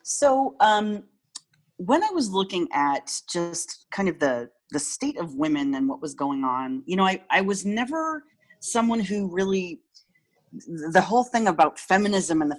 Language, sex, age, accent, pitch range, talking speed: English, female, 30-49, American, 155-235 Hz, 170 wpm